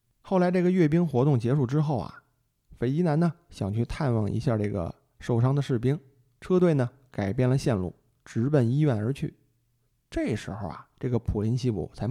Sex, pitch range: male, 115-150 Hz